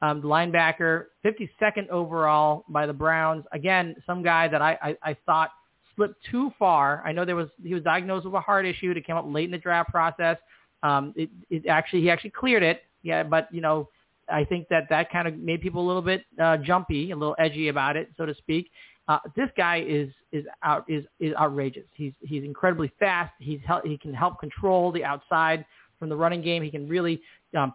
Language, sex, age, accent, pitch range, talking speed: English, male, 30-49, American, 150-185 Hz, 215 wpm